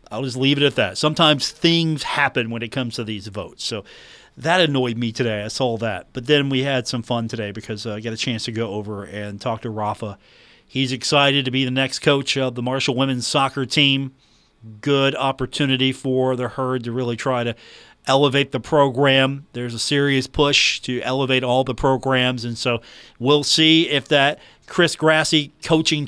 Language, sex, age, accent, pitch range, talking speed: English, male, 40-59, American, 120-150 Hz, 200 wpm